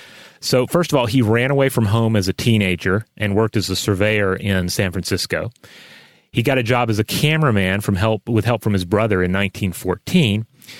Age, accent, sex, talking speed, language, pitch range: 30-49, American, male, 200 wpm, English, 105-130 Hz